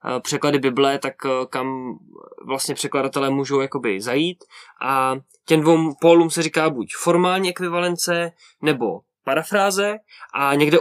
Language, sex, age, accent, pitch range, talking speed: Czech, male, 20-39, native, 145-170 Hz, 120 wpm